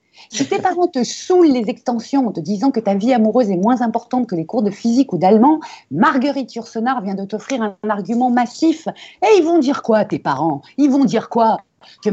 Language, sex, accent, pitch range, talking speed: French, female, French, 175-225 Hz, 220 wpm